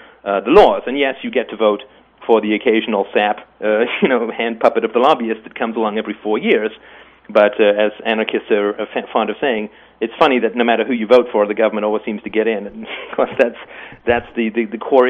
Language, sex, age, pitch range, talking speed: English, male, 40-59, 110-140 Hz, 245 wpm